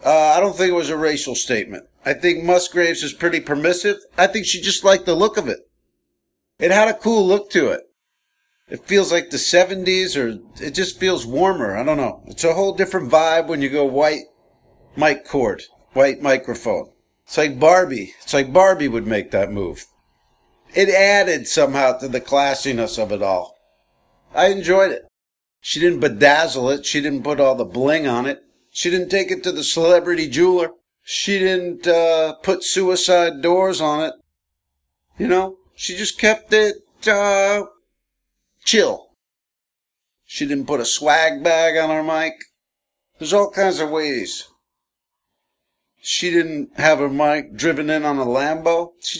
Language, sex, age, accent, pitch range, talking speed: English, male, 50-69, American, 150-195 Hz, 170 wpm